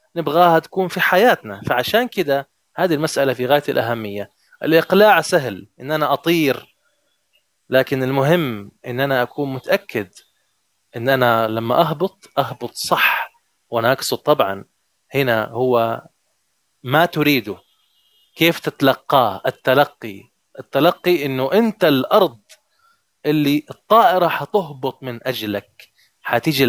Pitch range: 125-175 Hz